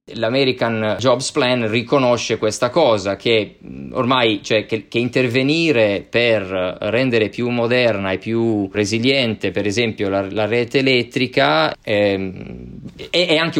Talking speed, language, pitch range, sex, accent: 125 wpm, Italian, 110-135 Hz, male, native